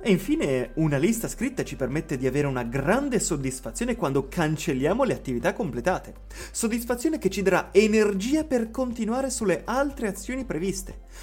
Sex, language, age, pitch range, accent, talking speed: male, Italian, 30-49, 130-200 Hz, native, 150 wpm